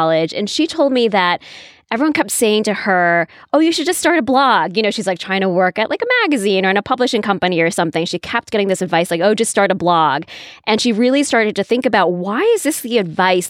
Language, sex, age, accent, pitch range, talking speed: English, female, 20-39, American, 180-235 Hz, 260 wpm